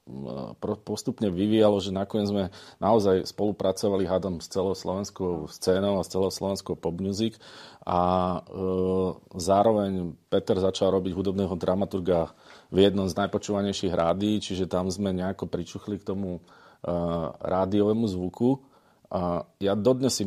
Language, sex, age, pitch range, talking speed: Slovak, male, 40-59, 90-105 Hz, 135 wpm